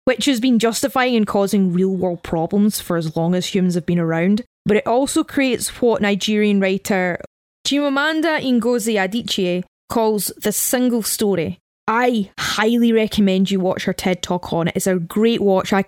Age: 20-39